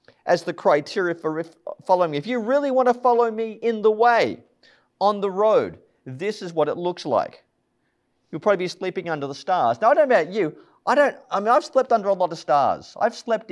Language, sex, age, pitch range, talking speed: English, male, 40-59, 180-240 Hz, 225 wpm